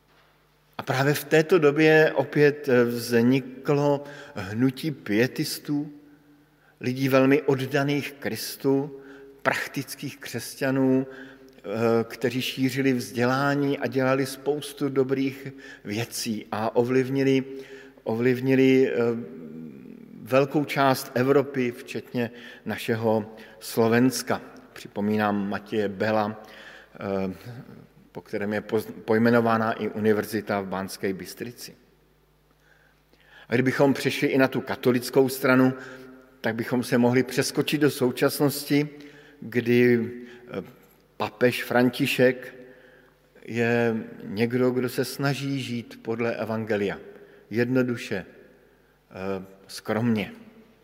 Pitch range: 115-140 Hz